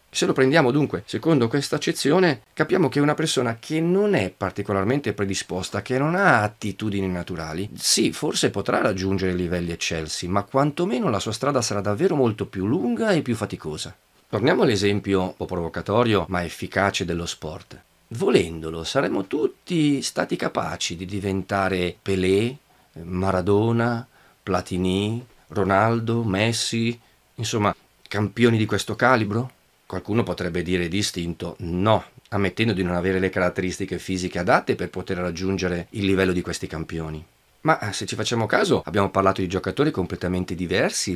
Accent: native